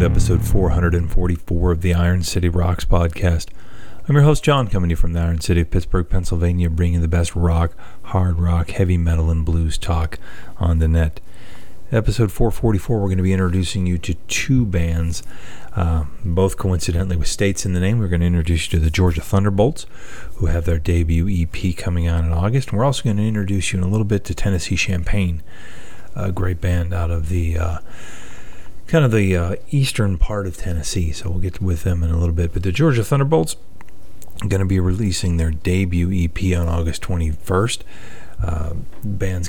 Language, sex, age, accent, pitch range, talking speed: English, male, 40-59, American, 85-100 Hz, 195 wpm